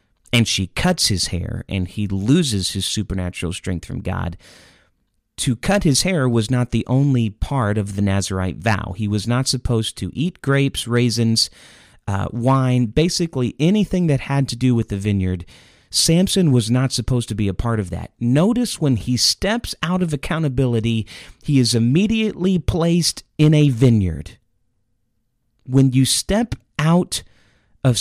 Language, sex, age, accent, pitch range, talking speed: English, male, 40-59, American, 105-150 Hz, 160 wpm